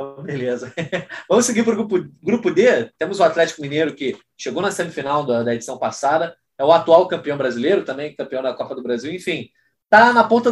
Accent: Brazilian